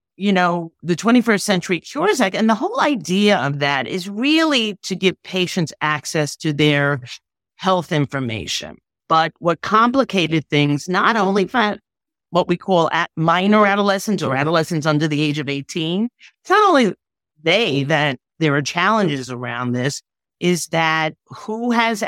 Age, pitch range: 50-69, 155-200 Hz